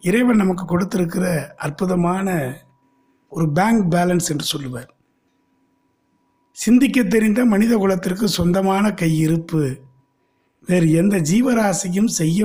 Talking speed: 90 wpm